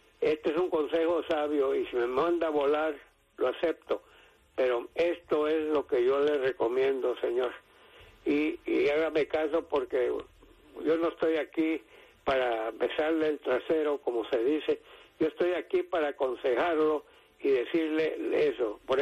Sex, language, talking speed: male, English, 150 wpm